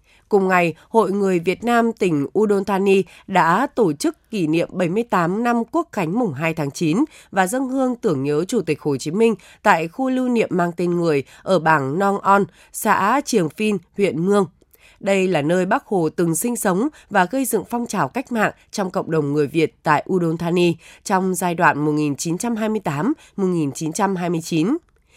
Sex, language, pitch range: female, Vietnamese, 165-225 Hz